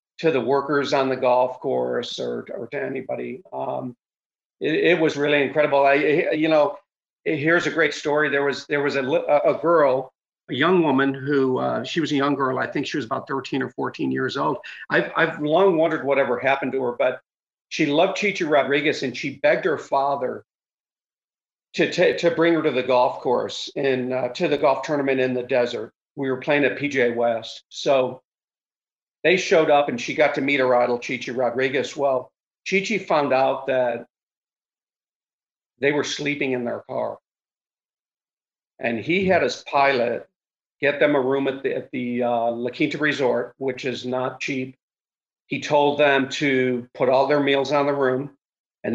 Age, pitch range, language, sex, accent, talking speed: 50-69, 125-150 Hz, English, male, American, 185 wpm